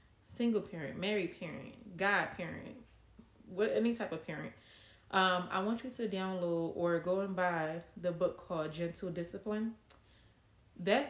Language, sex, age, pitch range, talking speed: English, female, 30-49, 170-205 Hz, 145 wpm